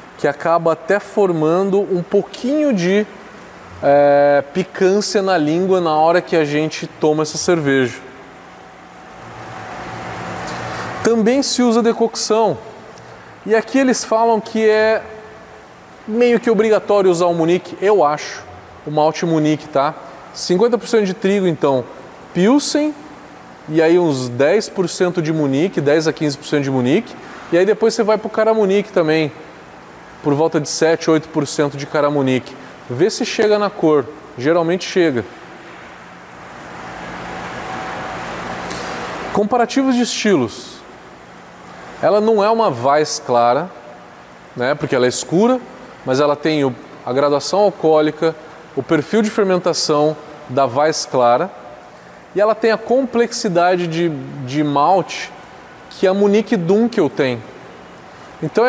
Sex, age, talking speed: male, 20-39, 125 wpm